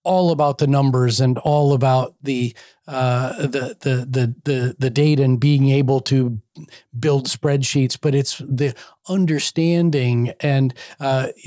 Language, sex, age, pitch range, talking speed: English, male, 40-59, 125-150 Hz, 140 wpm